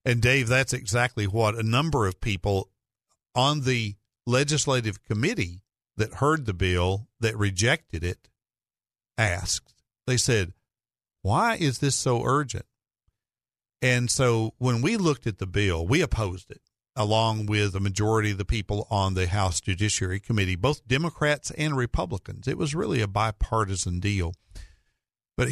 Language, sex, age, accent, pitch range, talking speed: English, male, 50-69, American, 100-130 Hz, 145 wpm